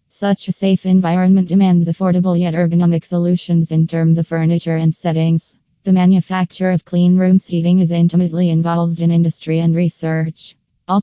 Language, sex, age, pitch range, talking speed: English, female, 20-39, 165-180 Hz, 160 wpm